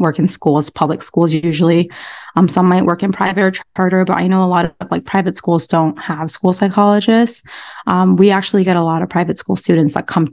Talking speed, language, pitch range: 225 wpm, English, 170-200 Hz